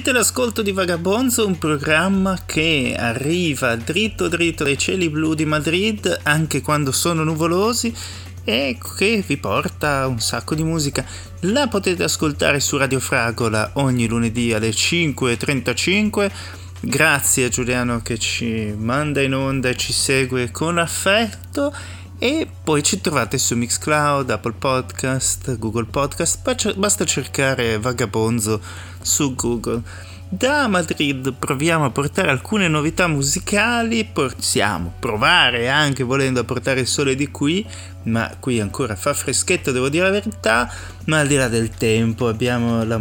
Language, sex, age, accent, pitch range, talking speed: Italian, male, 30-49, native, 110-155 Hz, 140 wpm